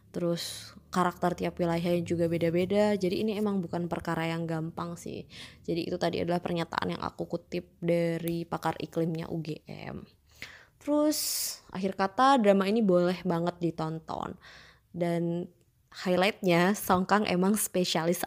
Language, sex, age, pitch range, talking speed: Indonesian, female, 20-39, 170-200 Hz, 130 wpm